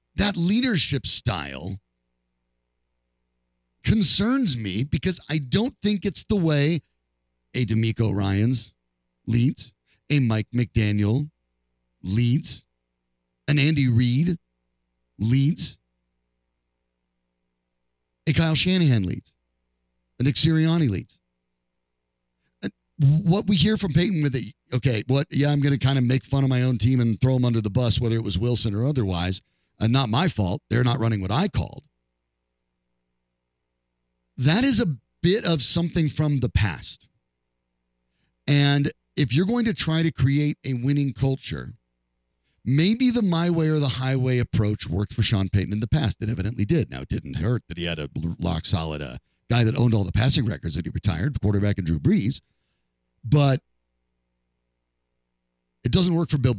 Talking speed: 155 wpm